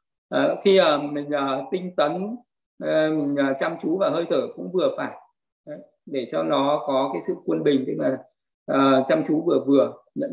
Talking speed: 200 wpm